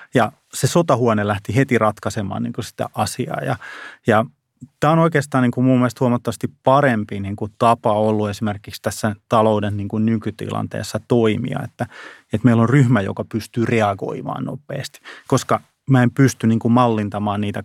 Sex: male